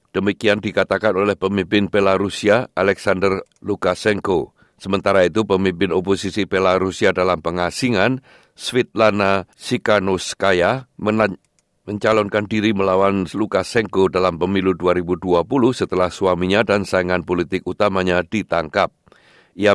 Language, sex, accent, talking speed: Indonesian, male, native, 95 wpm